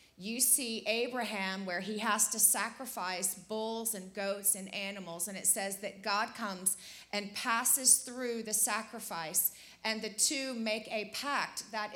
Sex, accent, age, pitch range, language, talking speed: female, American, 30-49, 200-240 Hz, English, 155 wpm